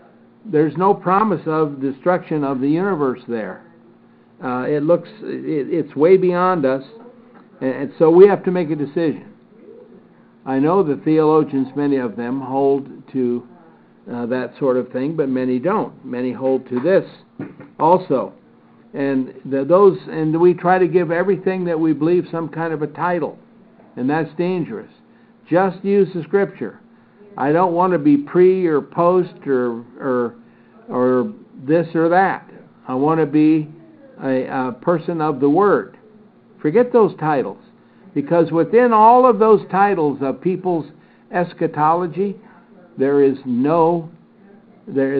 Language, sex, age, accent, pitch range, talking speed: English, male, 60-79, American, 135-195 Hz, 145 wpm